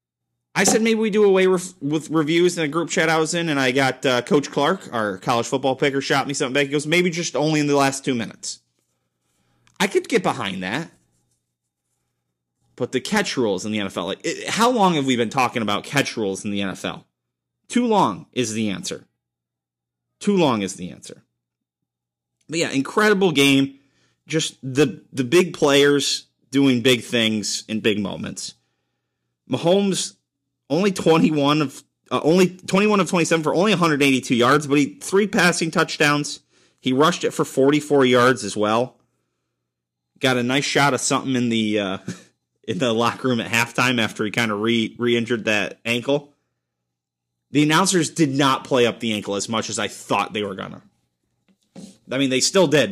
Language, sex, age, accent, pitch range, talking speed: English, male, 30-49, American, 95-150 Hz, 180 wpm